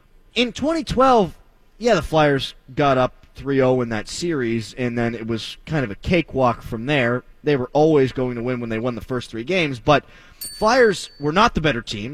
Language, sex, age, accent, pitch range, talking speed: English, male, 30-49, American, 125-175 Hz, 205 wpm